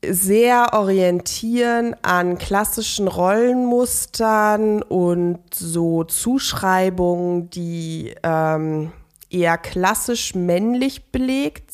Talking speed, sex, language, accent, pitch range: 70 wpm, female, German, German, 190-255 Hz